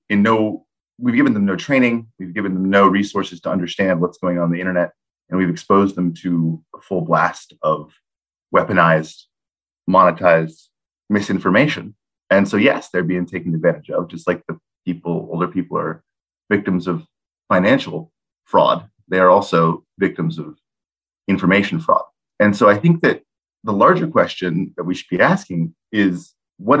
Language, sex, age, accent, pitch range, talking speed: English, male, 30-49, American, 80-100 Hz, 160 wpm